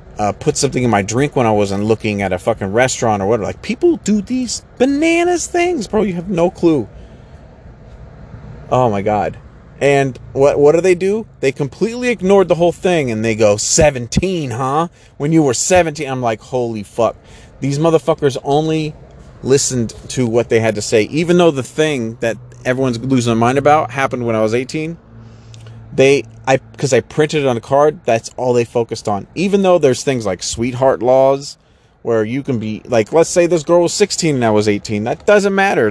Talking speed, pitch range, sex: 200 wpm, 110-155 Hz, male